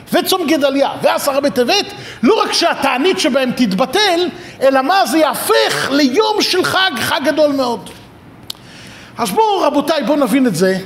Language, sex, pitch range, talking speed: Hebrew, male, 160-270 Hz, 145 wpm